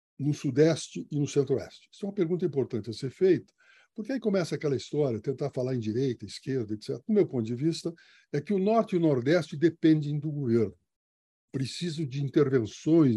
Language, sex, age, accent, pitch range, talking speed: Portuguese, male, 60-79, Brazilian, 125-175 Hz, 190 wpm